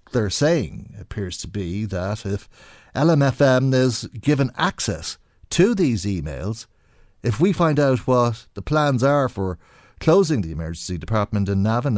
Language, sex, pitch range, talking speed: English, male, 100-145 Hz, 150 wpm